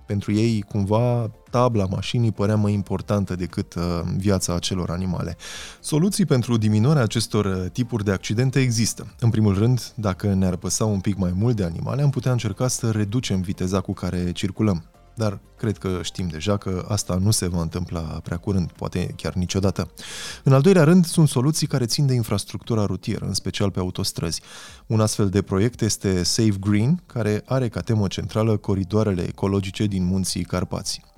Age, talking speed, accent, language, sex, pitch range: 20-39, 170 wpm, native, Romanian, male, 95-115 Hz